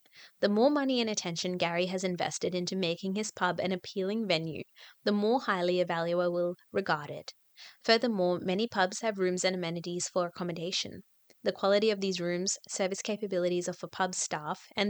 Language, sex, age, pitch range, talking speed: English, female, 20-39, 175-220 Hz, 175 wpm